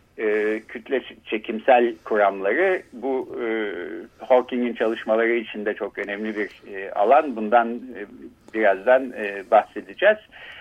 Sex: male